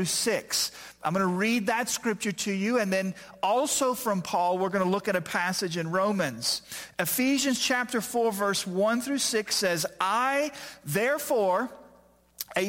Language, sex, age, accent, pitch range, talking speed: English, male, 40-59, American, 185-240 Hz, 155 wpm